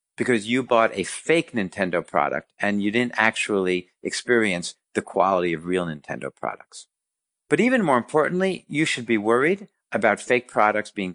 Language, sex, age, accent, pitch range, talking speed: English, male, 50-69, American, 105-145 Hz, 160 wpm